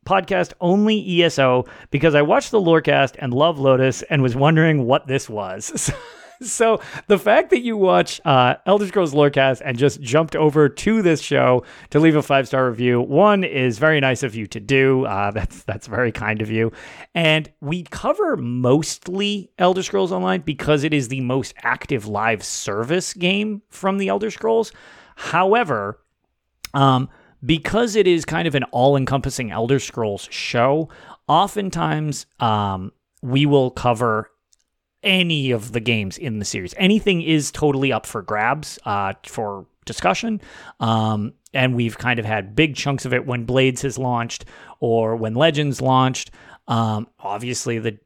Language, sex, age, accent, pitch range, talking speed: English, male, 30-49, American, 120-175 Hz, 160 wpm